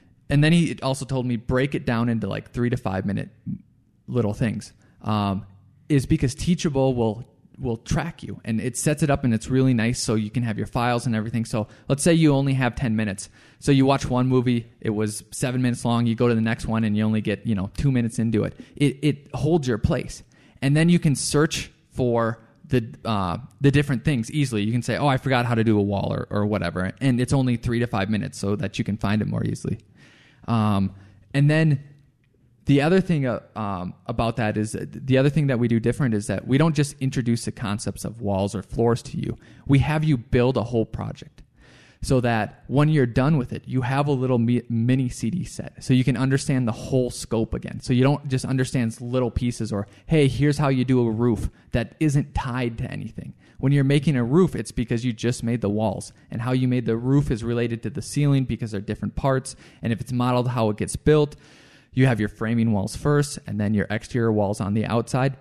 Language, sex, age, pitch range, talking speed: English, male, 20-39, 110-135 Hz, 230 wpm